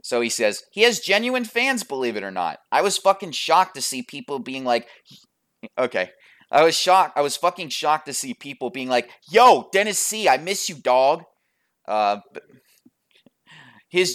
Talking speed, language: 180 wpm, English